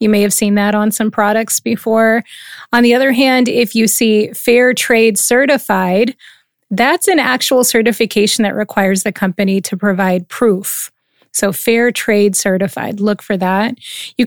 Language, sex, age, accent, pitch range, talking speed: English, female, 30-49, American, 205-235 Hz, 160 wpm